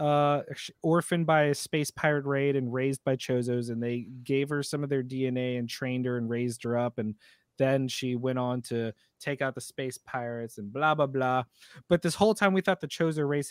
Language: English